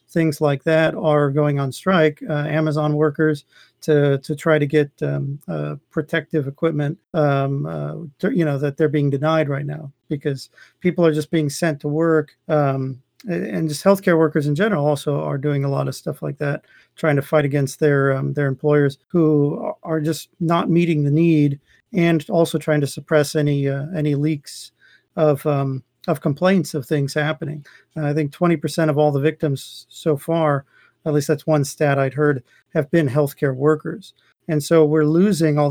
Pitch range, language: 145-160 Hz, English